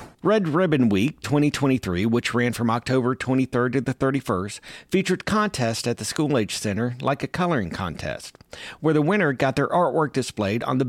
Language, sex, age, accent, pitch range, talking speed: English, male, 50-69, American, 115-150 Hz, 170 wpm